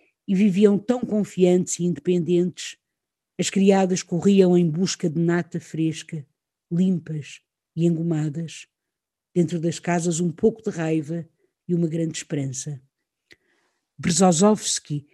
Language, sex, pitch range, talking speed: Portuguese, female, 165-190 Hz, 115 wpm